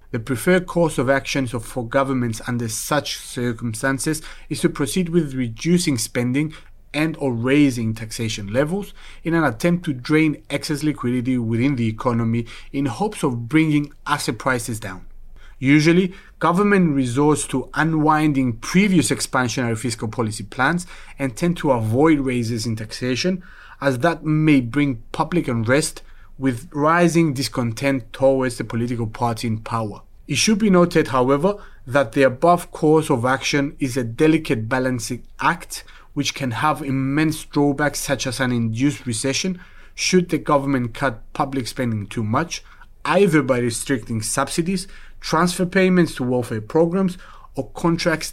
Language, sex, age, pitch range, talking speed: English, male, 30-49, 120-155 Hz, 145 wpm